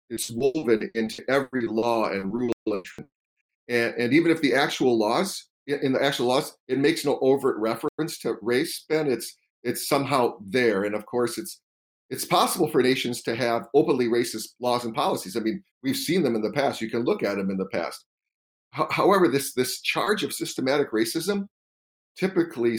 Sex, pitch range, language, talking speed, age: male, 105-130 Hz, English, 190 wpm, 40-59